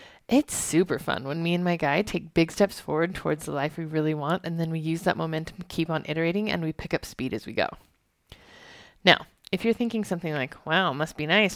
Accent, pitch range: American, 165-230 Hz